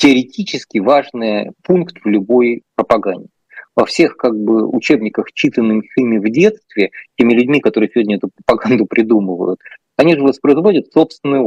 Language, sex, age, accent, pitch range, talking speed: Russian, male, 20-39, native, 115-155 Hz, 135 wpm